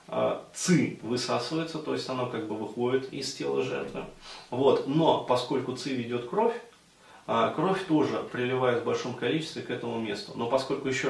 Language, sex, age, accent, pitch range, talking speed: Russian, male, 20-39, native, 105-135 Hz, 155 wpm